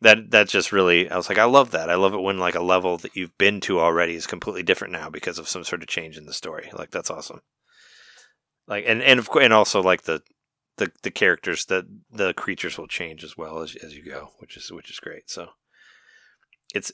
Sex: male